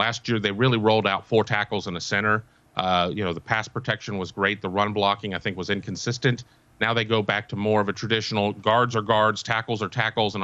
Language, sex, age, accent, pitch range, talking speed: English, male, 40-59, American, 105-120 Hz, 240 wpm